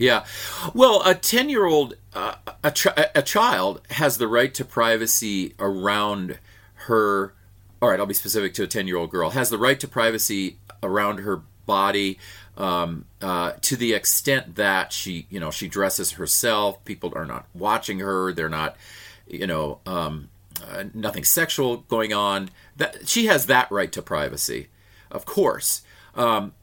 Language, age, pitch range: English, 40-59, 100-140 Hz